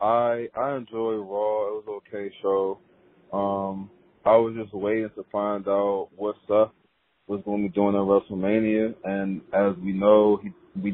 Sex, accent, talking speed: male, American, 175 wpm